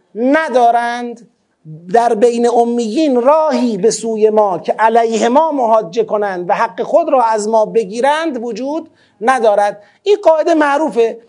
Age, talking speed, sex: 30-49, 135 wpm, male